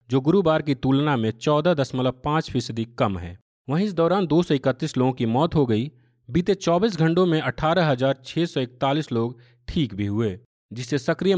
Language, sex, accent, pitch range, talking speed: Hindi, male, native, 125-160 Hz, 155 wpm